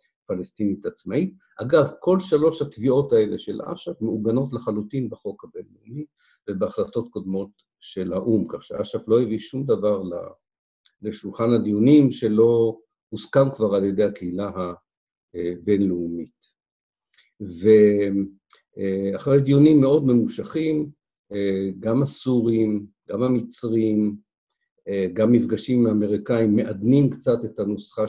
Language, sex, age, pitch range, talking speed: Hebrew, male, 50-69, 100-140 Hz, 105 wpm